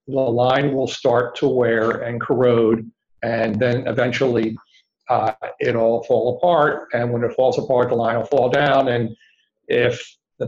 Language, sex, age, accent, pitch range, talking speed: English, male, 50-69, American, 115-130 Hz, 165 wpm